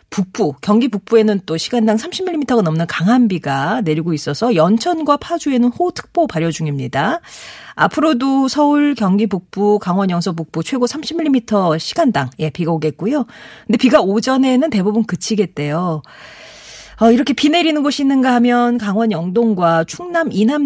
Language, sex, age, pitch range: Korean, female, 40-59, 165-255 Hz